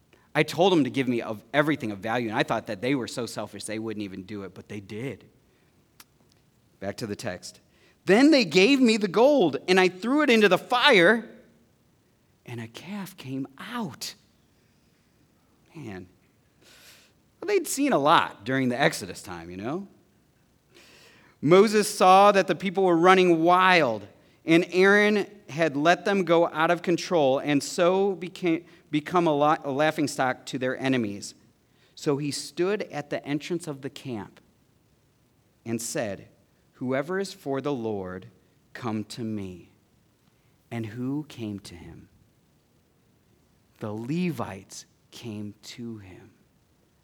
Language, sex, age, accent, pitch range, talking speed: English, male, 40-59, American, 115-180 Hz, 150 wpm